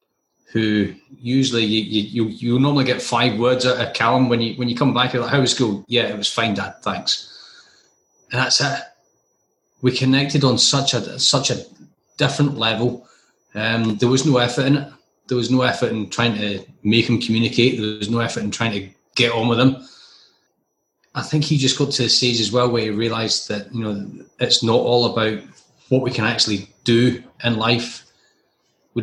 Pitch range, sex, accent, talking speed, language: 105-125 Hz, male, British, 205 wpm, English